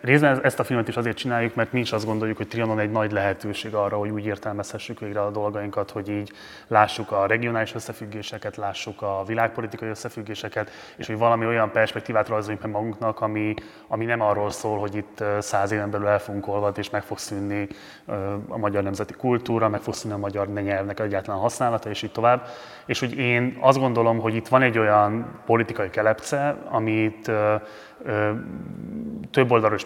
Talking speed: 180 wpm